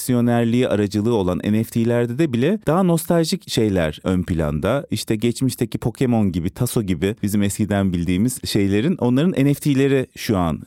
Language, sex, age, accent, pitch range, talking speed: Turkish, male, 30-49, native, 95-130 Hz, 135 wpm